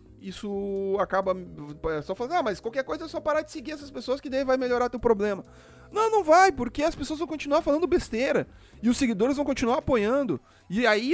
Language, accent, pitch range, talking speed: Portuguese, Brazilian, 155-245 Hz, 215 wpm